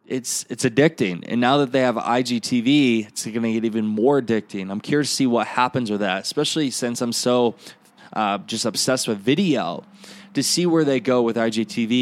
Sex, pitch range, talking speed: male, 110-140 Hz, 200 wpm